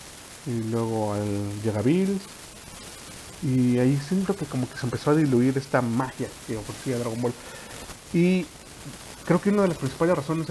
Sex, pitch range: male, 110-135 Hz